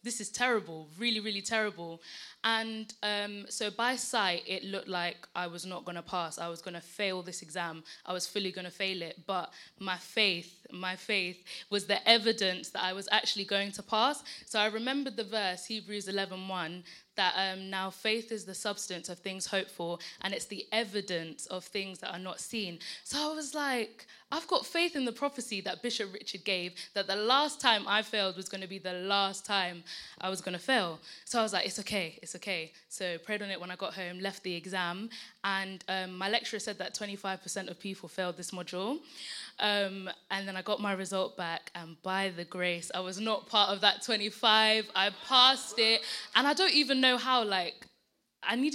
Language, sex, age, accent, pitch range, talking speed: English, female, 10-29, British, 180-220 Hz, 210 wpm